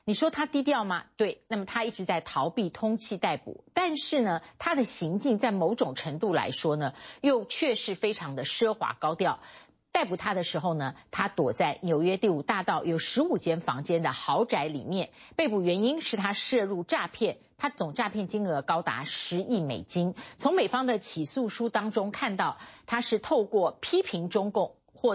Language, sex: Chinese, female